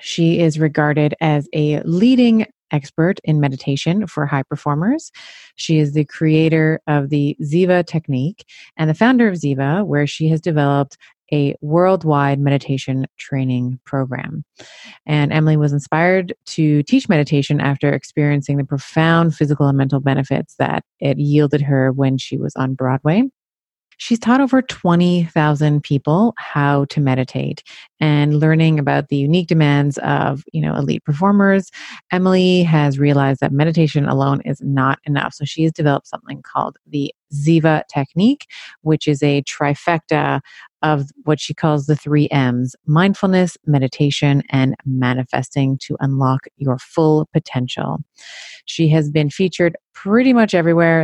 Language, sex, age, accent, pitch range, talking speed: English, female, 30-49, American, 140-165 Hz, 145 wpm